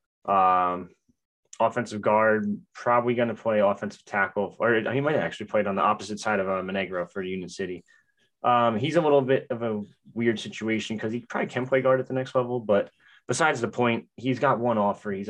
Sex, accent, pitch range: male, American, 105-130 Hz